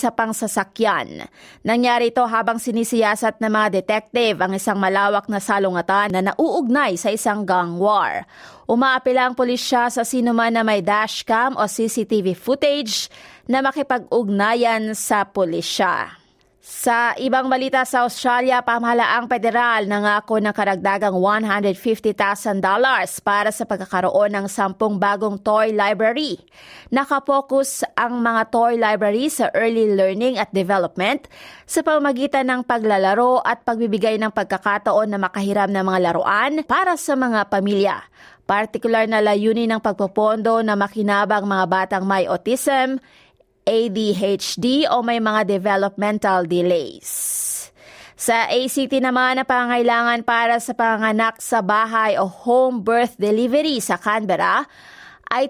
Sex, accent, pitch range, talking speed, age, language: female, native, 205-245 Hz, 125 wpm, 20-39, Filipino